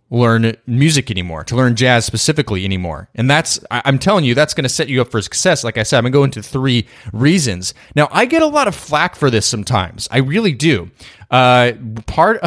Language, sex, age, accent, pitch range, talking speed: English, male, 20-39, American, 105-140 Hz, 220 wpm